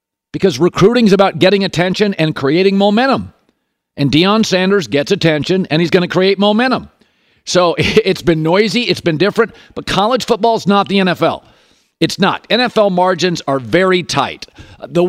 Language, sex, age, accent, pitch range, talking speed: English, male, 50-69, American, 170-210 Hz, 165 wpm